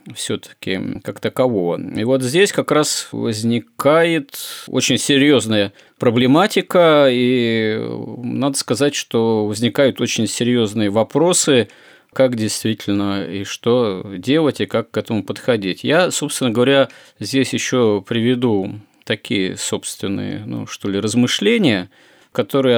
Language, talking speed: Russian, 115 wpm